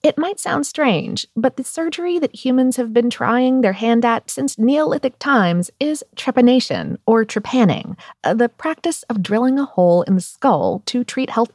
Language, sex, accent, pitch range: English, female, American, 200-260 Hz